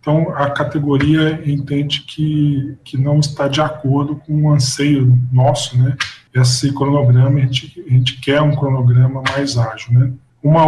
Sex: male